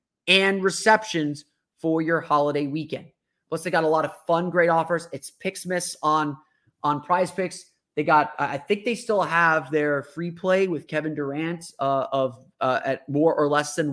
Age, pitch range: 30-49, 150-185 Hz